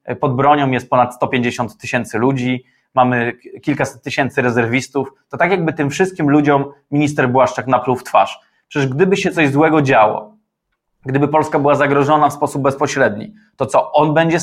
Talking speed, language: 160 wpm, Polish